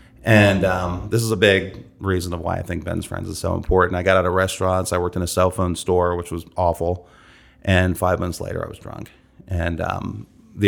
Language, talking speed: English, 230 wpm